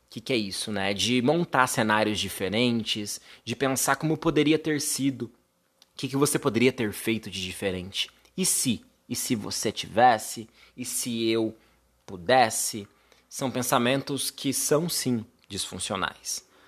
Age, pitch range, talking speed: 20-39, 105-140 Hz, 140 wpm